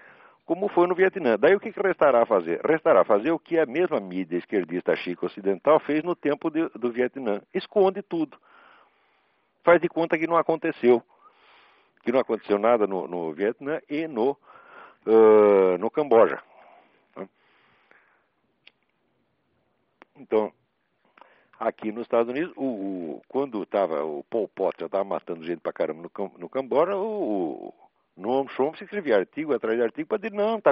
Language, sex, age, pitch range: Portuguese, male, 60-79, 115-190 Hz